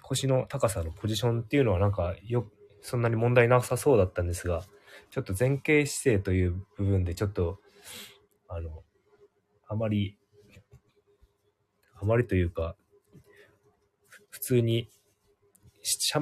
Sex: male